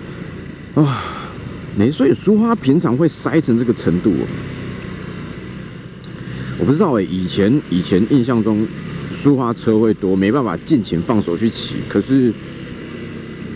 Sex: male